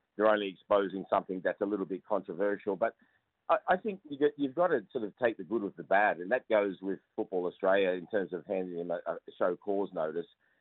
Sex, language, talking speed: male, English, 240 wpm